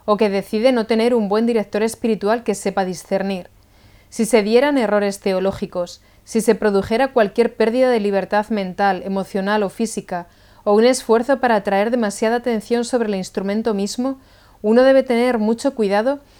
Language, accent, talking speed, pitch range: Spanish, Spanish, 160 wpm, 195-235 Hz